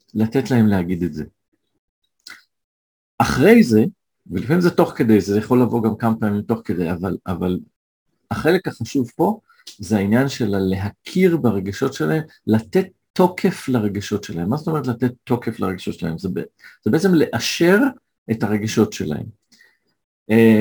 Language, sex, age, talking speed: Hebrew, male, 50-69, 135 wpm